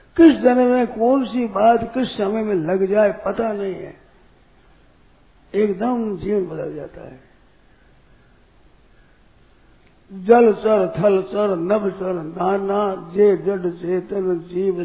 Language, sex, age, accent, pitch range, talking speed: Hindi, male, 60-79, native, 185-225 Hz, 125 wpm